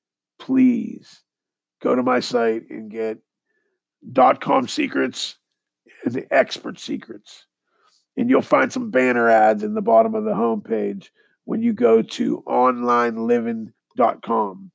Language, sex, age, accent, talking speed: English, male, 40-59, American, 120 wpm